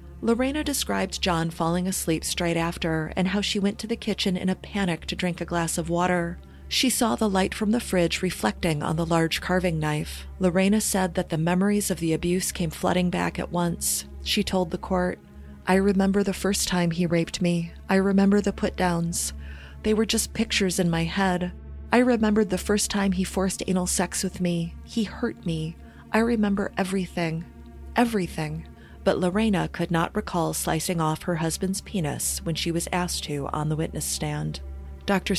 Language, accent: English, American